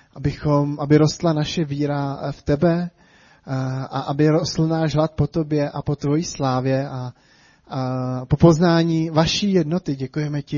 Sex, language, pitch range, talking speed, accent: male, Czech, 140-160 Hz, 145 wpm, native